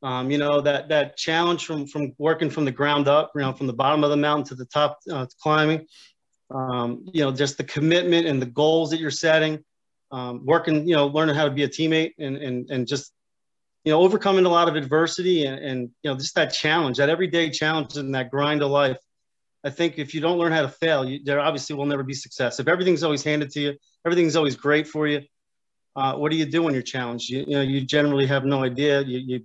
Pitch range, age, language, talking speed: 135-155 Hz, 30-49, English, 245 wpm